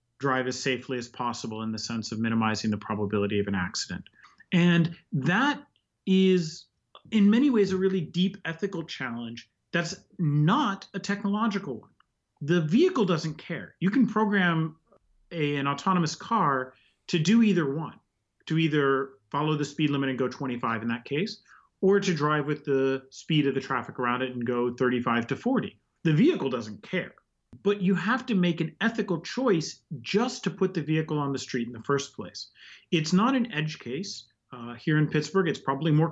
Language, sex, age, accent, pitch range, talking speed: English, male, 30-49, American, 130-190 Hz, 185 wpm